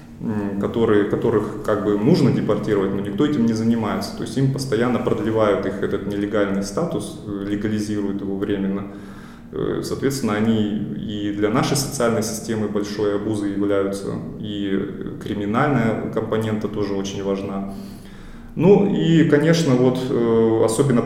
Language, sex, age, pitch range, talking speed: Russian, male, 20-39, 100-115 Hz, 120 wpm